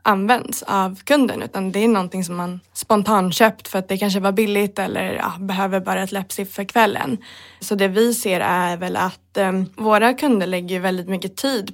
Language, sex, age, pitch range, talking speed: Swedish, female, 20-39, 190-215 Hz, 200 wpm